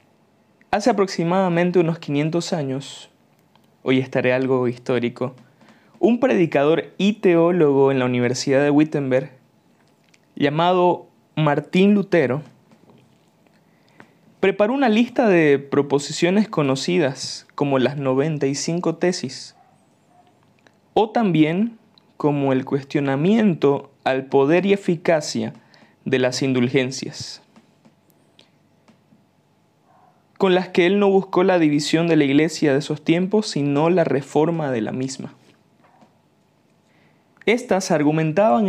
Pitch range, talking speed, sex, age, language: 135-180 Hz, 100 wpm, male, 20-39, Spanish